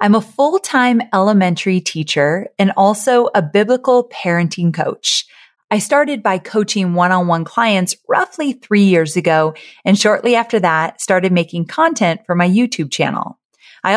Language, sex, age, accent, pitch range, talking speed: English, female, 30-49, American, 170-230 Hz, 140 wpm